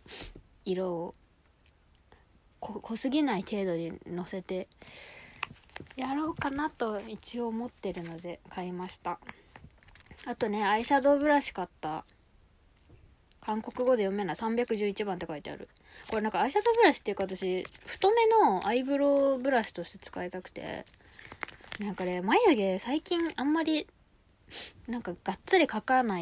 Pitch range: 180-250 Hz